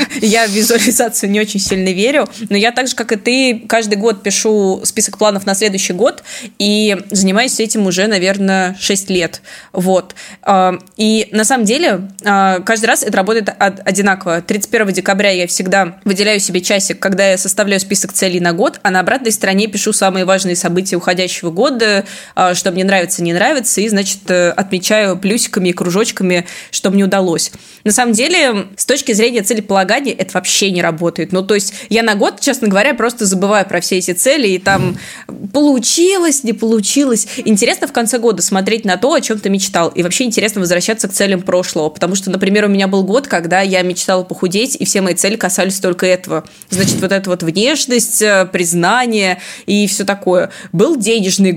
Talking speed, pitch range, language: 180 wpm, 185-225 Hz, Russian